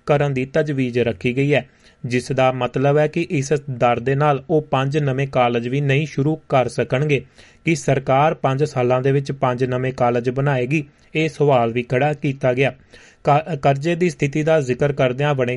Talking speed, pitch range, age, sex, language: 175 wpm, 130-150 Hz, 30-49, male, Punjabi